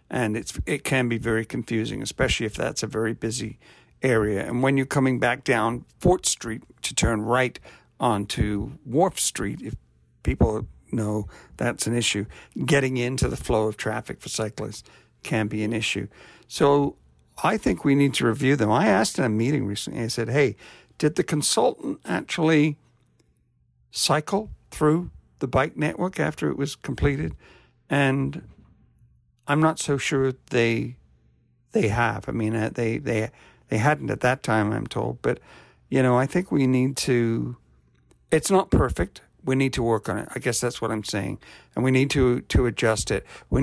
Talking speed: 175 wpm